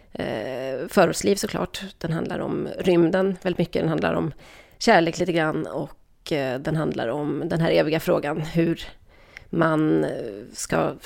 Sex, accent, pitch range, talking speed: female, native, 155-190 Hz, 135 wpm